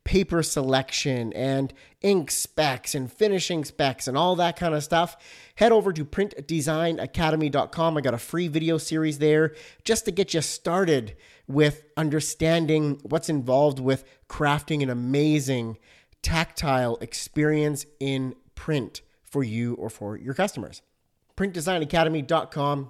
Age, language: 30-49, English